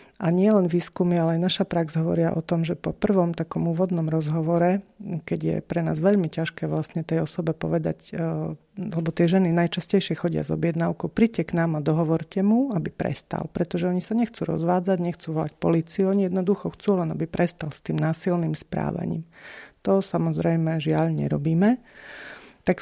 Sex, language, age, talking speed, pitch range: female, Slovak, 40-59, 170 wpm, 160-180 Hz